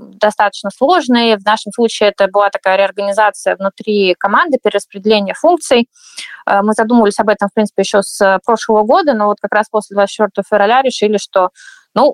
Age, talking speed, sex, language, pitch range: 20-39, 165 wpm, female, Russian, 190-220 Hz